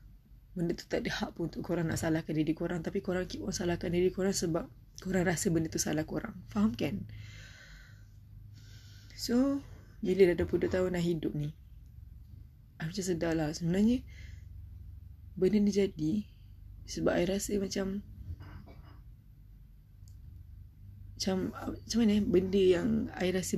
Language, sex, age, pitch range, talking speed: Malay, female, 20-39, 145-180 Hz, 130 wpm